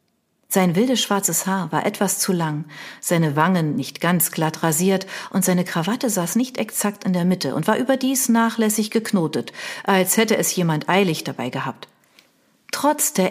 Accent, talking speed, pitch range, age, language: German, 165 wpm, 170-235 Hz, 40-59, German